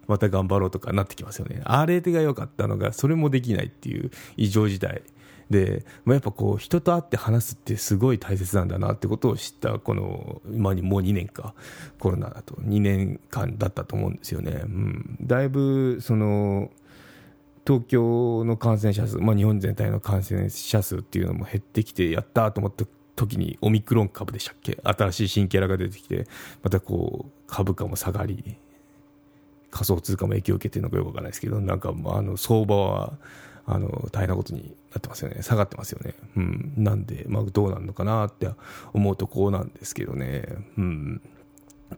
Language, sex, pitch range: Japanese, male, 100-125 Hz